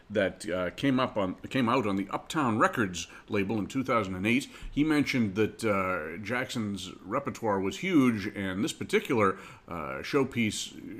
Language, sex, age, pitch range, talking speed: English, male, 50-69, 100-130 Hz, 145 wpm